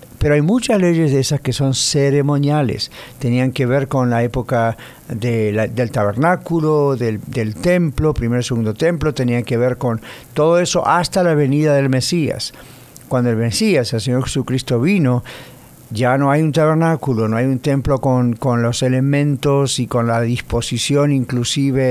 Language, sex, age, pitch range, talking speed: English, male, 50-69, 125-150 Hz, 165 wpm